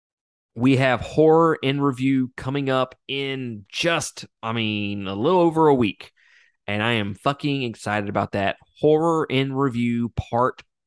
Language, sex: English, male